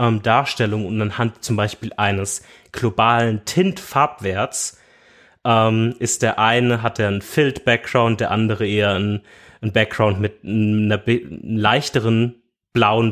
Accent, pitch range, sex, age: German, 110-125 Hz, male, 30-49